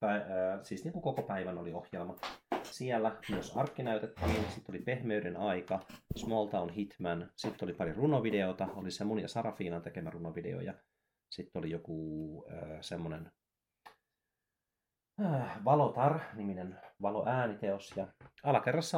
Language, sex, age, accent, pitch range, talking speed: Finnish, male, 30-49, native, 90-125 Hz, 125 wpm